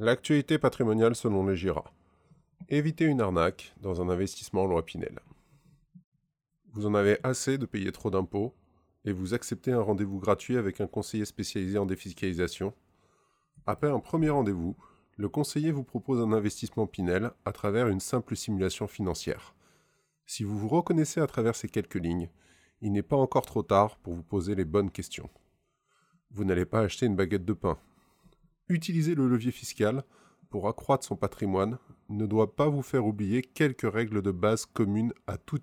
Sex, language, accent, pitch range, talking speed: male, French, French, 100-135 Hz, 170 wpm